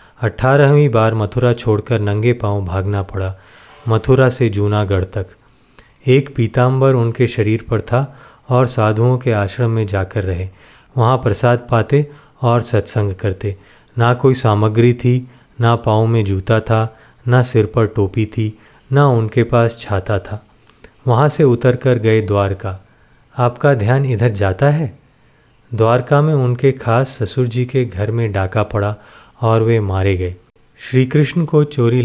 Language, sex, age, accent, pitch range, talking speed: Hindi, male, 30-49, native, 105-130 Hz, 150 wpm